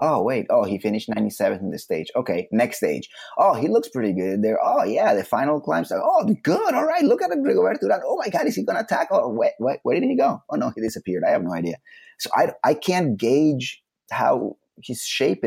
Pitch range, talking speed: 100-150 Hz, 240 wpm